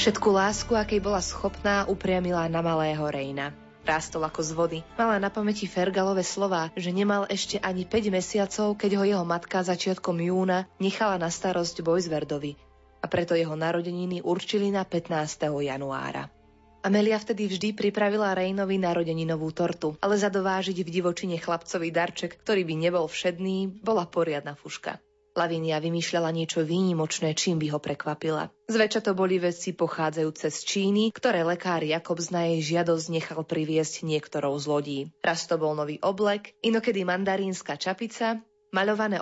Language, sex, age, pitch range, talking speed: Slovak, female, 20-39, 160-200 Hz, 150 wpm